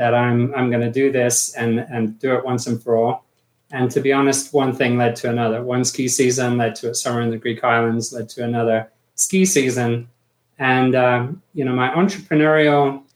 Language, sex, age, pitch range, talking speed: English, male, 30-49, 120-135 Hz, 210 wpm